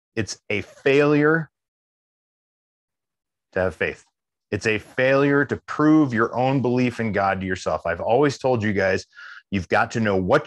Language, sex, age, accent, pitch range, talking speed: English, male, 30-49, American, 100-130 Hz, 160 wpm